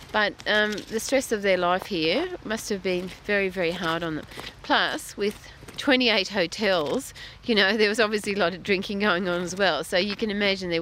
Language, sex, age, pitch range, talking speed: English, female, 40-59, 165-200 Hz, 210 wpm